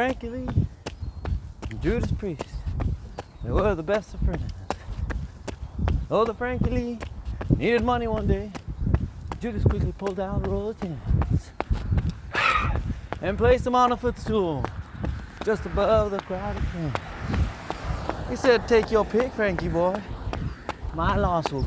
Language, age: English, 30-49